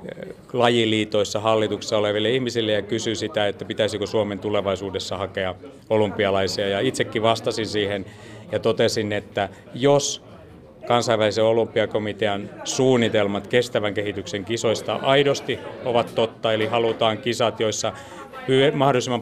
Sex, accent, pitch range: male, native, 105-120 Hz